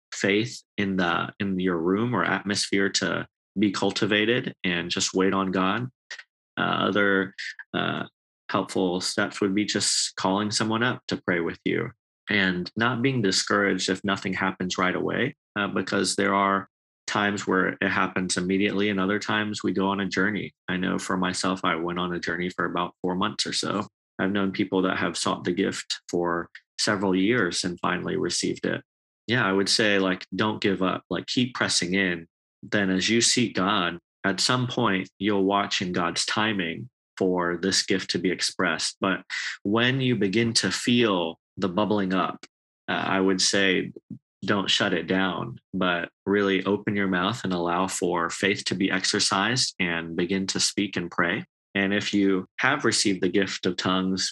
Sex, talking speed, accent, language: male, 180 wpm, American, English